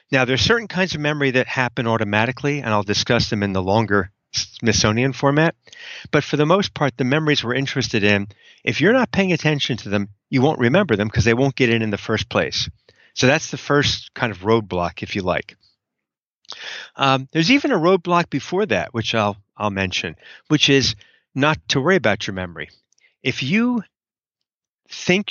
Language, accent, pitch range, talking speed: English, American, 110-145 Hz, 190 wpm